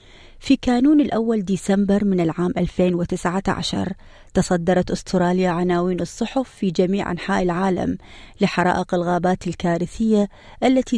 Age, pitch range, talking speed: 30-49, 180-210 Hz, 105 wpm